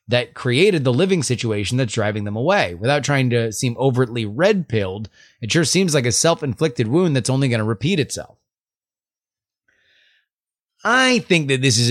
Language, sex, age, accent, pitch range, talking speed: English, male, 30-49, American, 115-155 Hz, 165 wpm